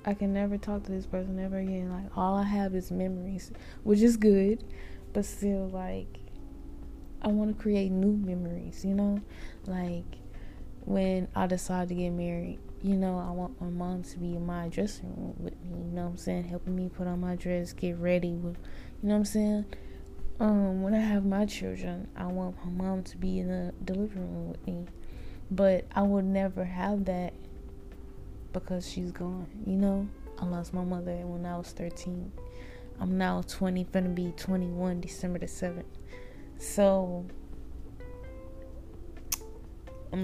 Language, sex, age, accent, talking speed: English, female, 20-39, American, 175 wpm